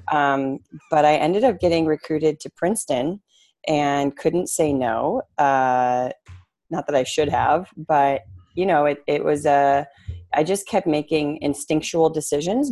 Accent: American